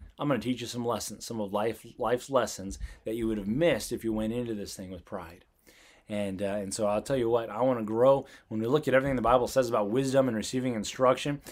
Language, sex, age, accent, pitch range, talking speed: English, male, 30-49, American, 100-125 Hz, 260 wpm